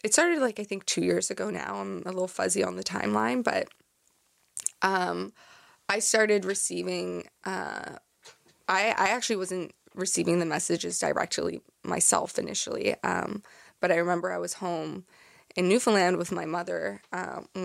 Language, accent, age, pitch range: English, American, 20-39, 165-195 Hz